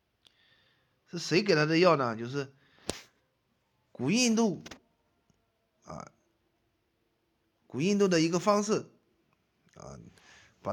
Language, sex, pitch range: Chinese, male, 115-185 Hz